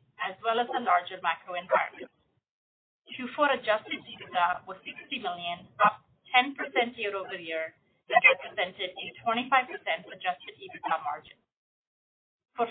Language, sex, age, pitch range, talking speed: English, female, 30-49, 190-270 Hz, 120 wpm